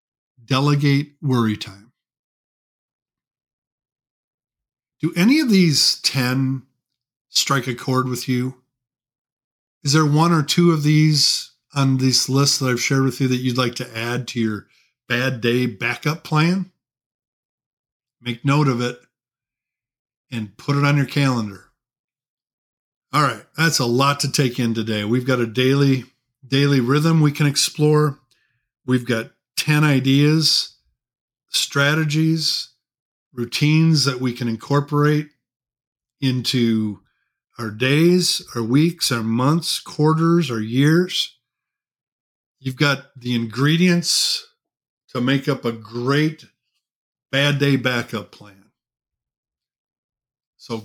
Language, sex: English, male